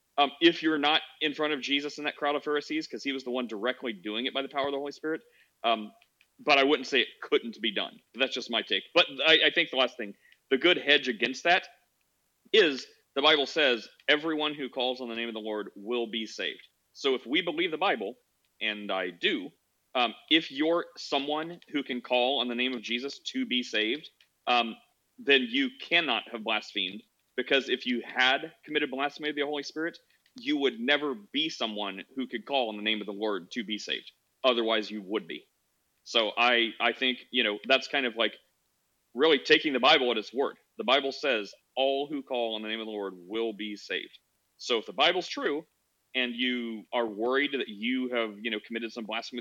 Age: 40-59